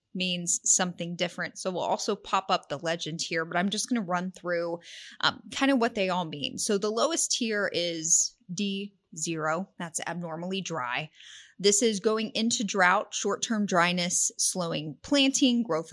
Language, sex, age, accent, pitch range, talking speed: English, female, 30-49, American, 175-215 Hz, 165 wpm